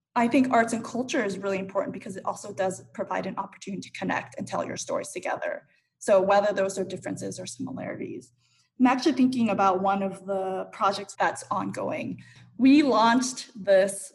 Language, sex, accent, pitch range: English, female, American, 195-230 Hz